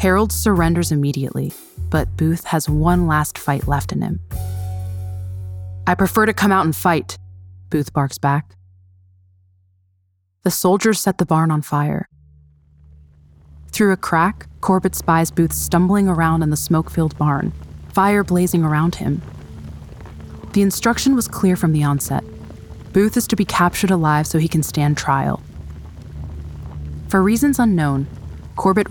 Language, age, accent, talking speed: English, 20-39, American, 140 wpm